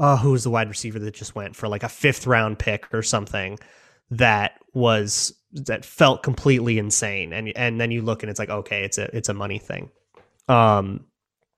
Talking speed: 200 wpm